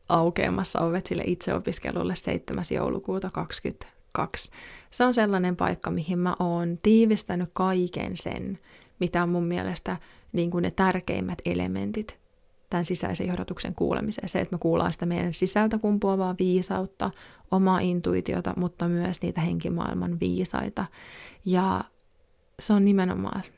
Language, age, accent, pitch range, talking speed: Finnish, 20-39, native, 175-195 Hz, 120 wpm